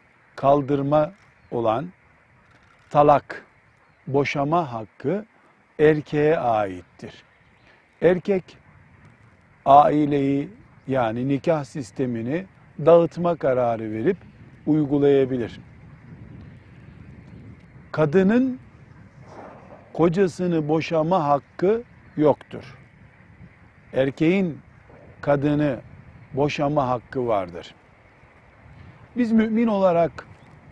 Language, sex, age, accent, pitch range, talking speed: Turkish, male, 50-69, native, 130-170 Hz, 55 wpm